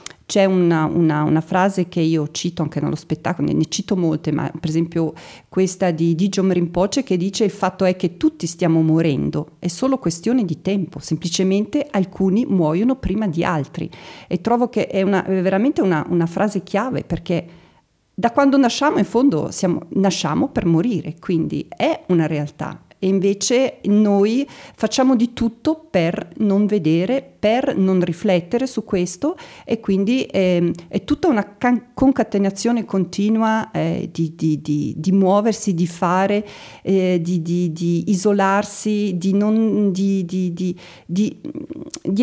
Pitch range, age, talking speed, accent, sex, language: 170-230 Hz, 40-59, 155 wpm, native, female, Italian